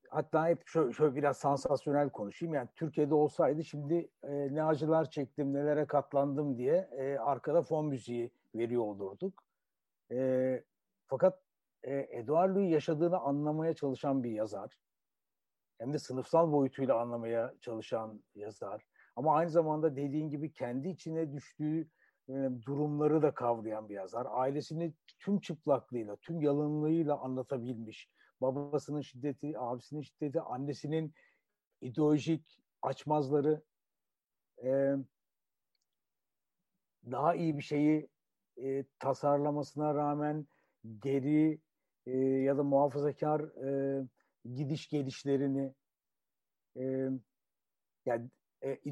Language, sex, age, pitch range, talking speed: Turkish, male, 60-79, 130-155 Hz, 100 wpm